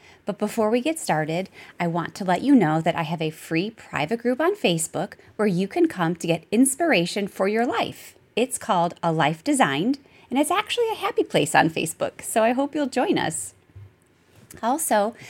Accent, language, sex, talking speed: American, English, female, 195 wpm